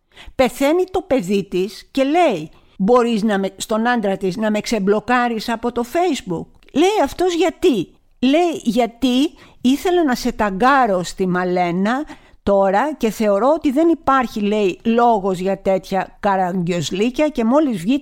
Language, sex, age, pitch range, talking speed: Greek, female, 50-69, 195-285 Hz, 145 wpm